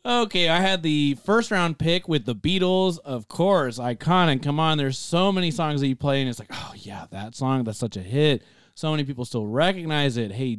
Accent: American